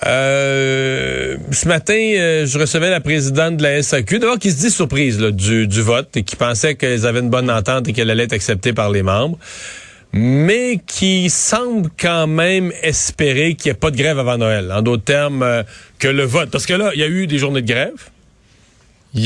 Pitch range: 120-160 Hz